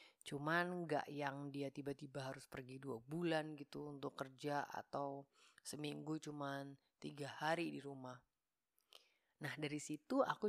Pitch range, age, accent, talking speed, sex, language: 135-170 Hz, 30-49, native, 130 wpm, female, Indonesian